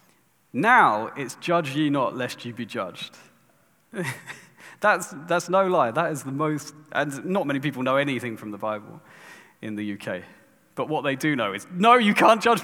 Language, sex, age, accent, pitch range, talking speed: English, male, 30-49, British, 120-160 Hz, 185 wpm